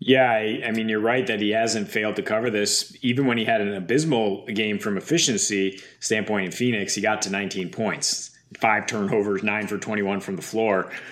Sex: male